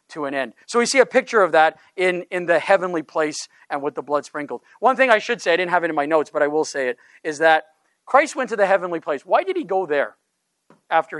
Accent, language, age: American, English, 40-59